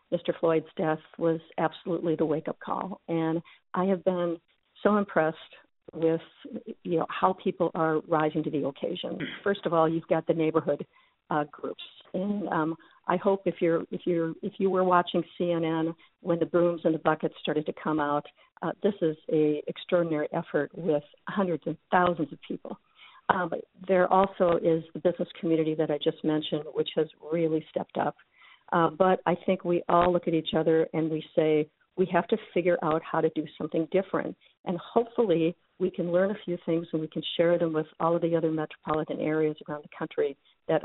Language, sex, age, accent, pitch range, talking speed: English, female, 50-69, American, 160-180 Hz, 190 wpm